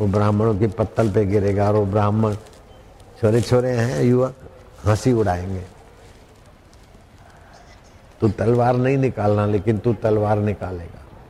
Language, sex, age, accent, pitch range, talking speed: Hindi, male, 60-79, native, 100-120 Hz, 110 wpm